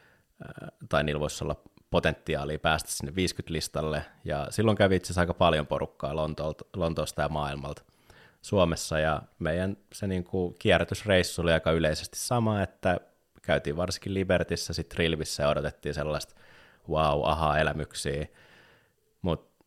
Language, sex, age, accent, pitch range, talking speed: Finnish, male, 20-39, native, 75-90 Hz, 130 wpm